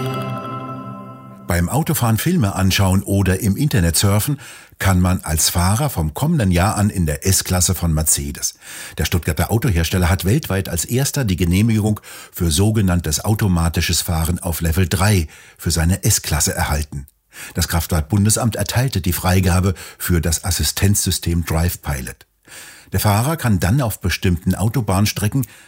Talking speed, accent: 135 wpm, German